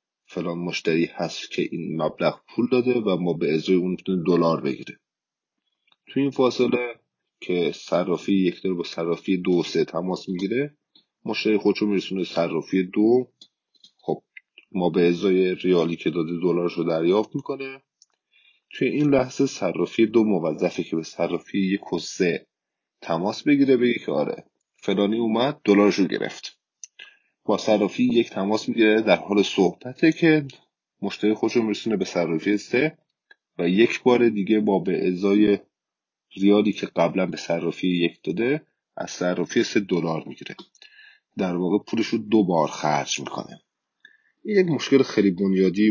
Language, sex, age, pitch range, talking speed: Persian, male, 30-49, 90-125 Hz, 140 wpm